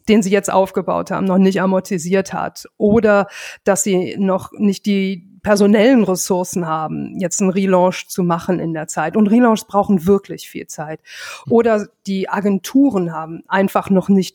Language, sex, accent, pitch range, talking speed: German, female, German, 190-225 Hz, 165 wpm